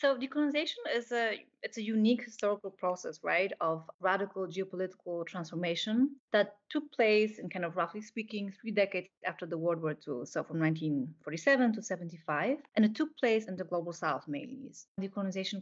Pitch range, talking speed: 180-220 Hz, 170 wpm